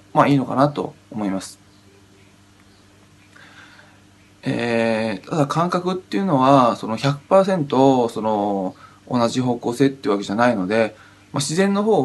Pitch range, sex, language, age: 105-140 Hz, male, Japanese, 20-39